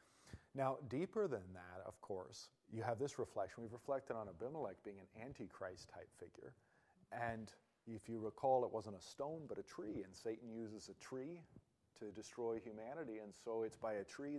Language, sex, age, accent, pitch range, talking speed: English, male, 40-59, American, 100-130 Hz, 180 wpm